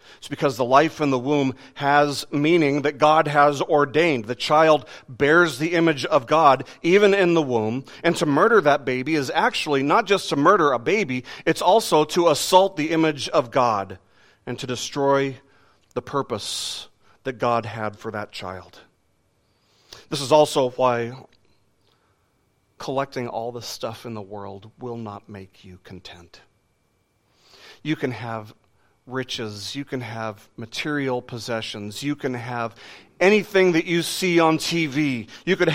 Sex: male